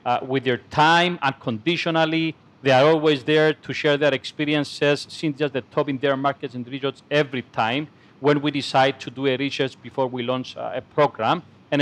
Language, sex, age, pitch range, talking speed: English, male, 40-59, 135-155 Hz, 195 wpm